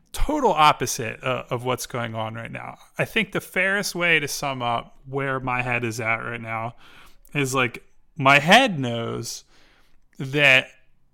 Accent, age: American, 20-39